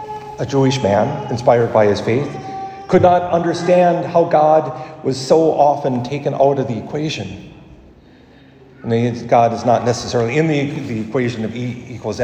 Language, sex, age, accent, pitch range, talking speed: English, male, 50-69, American, 120-150 Hz, 145 wpm